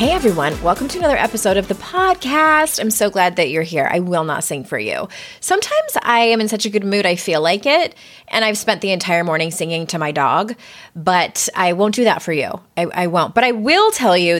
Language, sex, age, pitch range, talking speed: English, female, 20-39, 165-245 Hz, 240 wpm